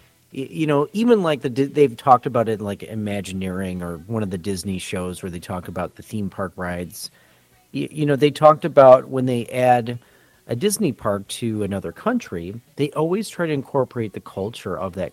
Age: 40-59